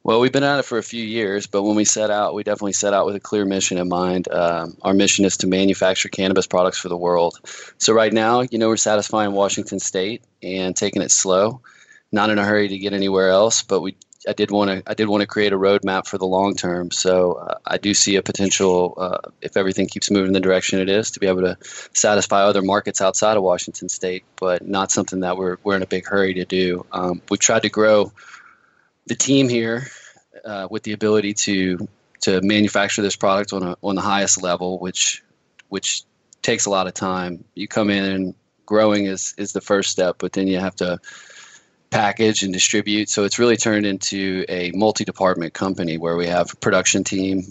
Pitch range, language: 95-105 Hz, English